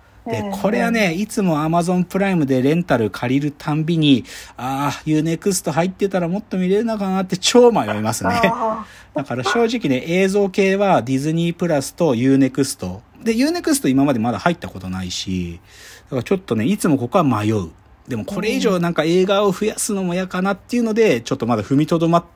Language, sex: Japanese, male